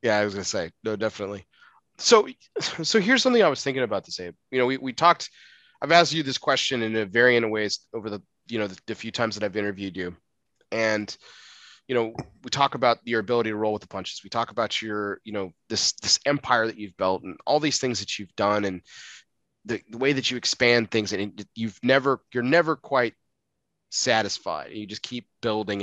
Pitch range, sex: 110-155 Hz, male